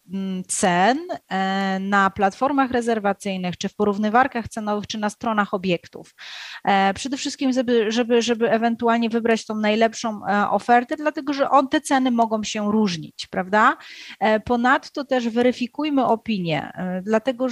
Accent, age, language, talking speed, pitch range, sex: native, 30-49, Polish, 120 wpm, 195-235 Hz, female